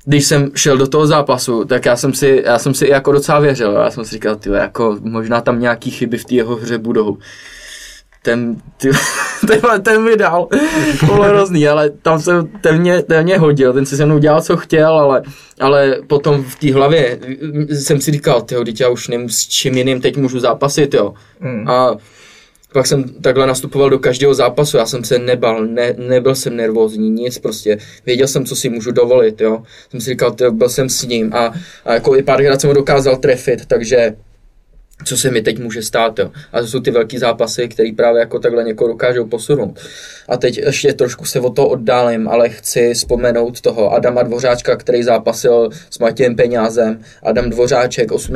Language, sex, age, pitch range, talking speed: Czech, male, 20-39, 120-150 Hz, 185 wpm